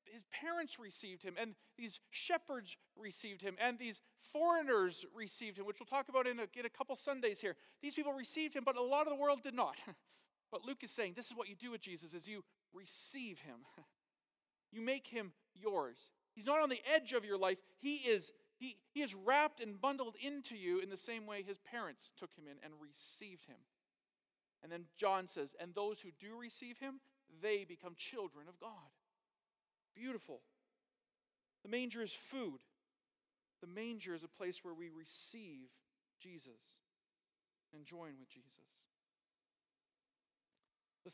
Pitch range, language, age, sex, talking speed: 180-255 Hz, English, 40-59, male, 175 wpm